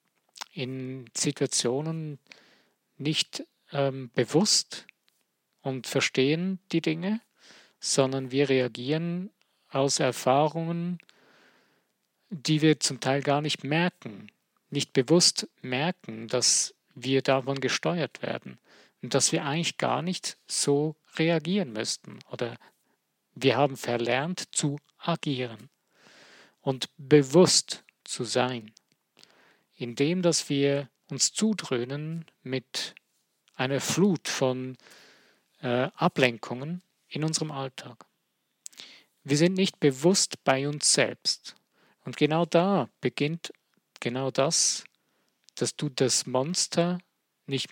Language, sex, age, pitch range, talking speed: German, male, 50-69, 130-165 Hz, 100 wpm